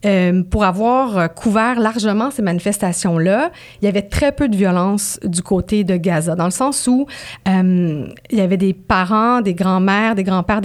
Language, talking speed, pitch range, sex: English, 180 wpm, 180-225 Hz, female